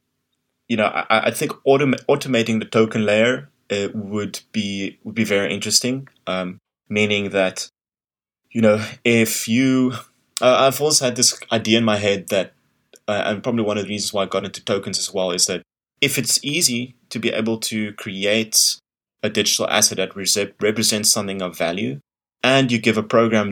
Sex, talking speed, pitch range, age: male, 180 wpm, 100-115 Hz, 20-39